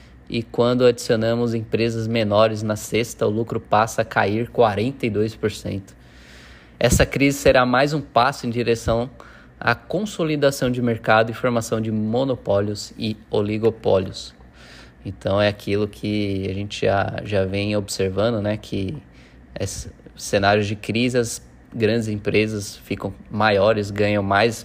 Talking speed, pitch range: 130 wpm, 95-115 Hz